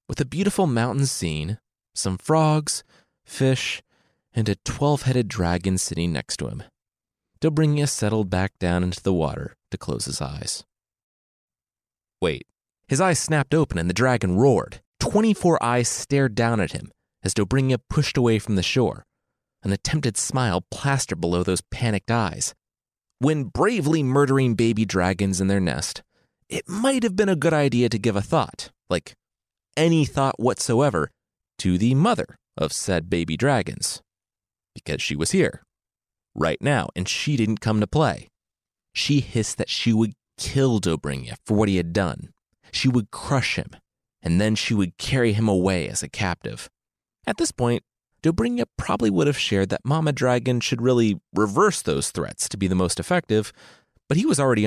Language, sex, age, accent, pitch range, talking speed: English, male, 30-49, American, 95-140 Hz, 165 wpm